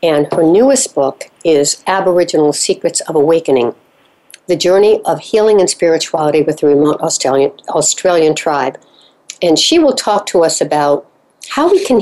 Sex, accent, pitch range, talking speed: female, American, 155-235 Hz, 155 wpm